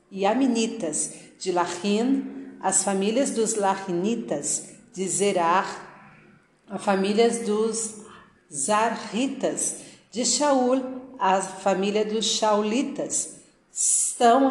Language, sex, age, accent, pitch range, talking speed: Portuguese, female, 50-69, Brazilian, 190-250 Hz, 85 wpm